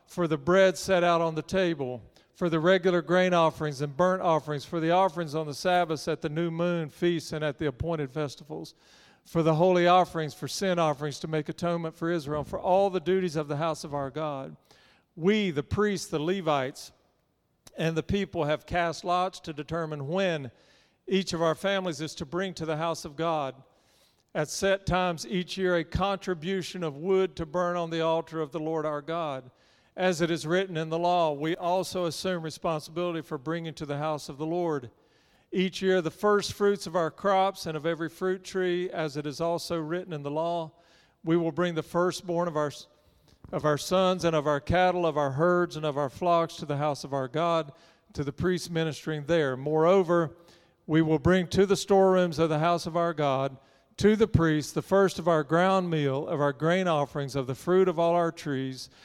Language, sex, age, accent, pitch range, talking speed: English, male, 50-69, American, 155-180 Hz, 205 wpm